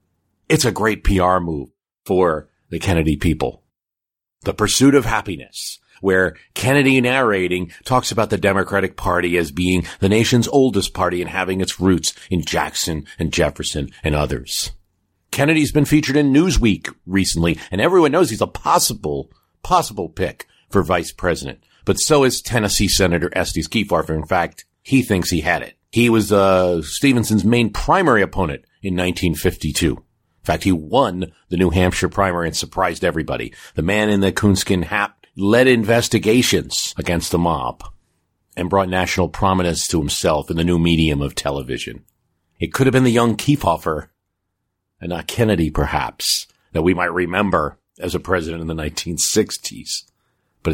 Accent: American